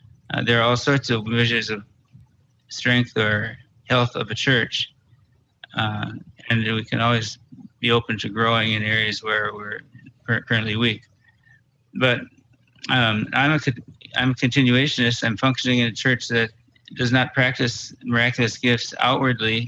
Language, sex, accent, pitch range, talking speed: English, male, American, 115-125 Hz, 145 wpm